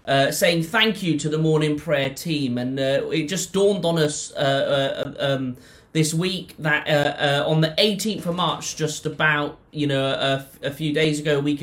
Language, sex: English, male